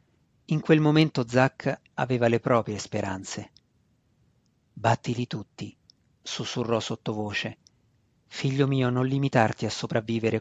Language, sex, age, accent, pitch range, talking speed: Italian, male, 40-59, native, 115-145 Hz, 105 wpm